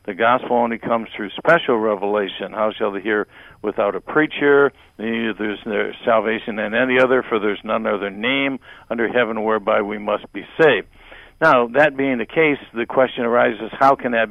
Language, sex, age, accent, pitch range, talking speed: English, male, 60-79, American, 110-130 Hz, 185 wpm